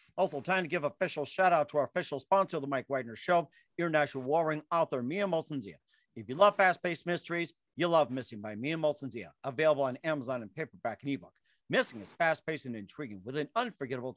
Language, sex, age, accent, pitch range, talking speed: English, male, 50-69, American, 135-165 Hz, 205 wpm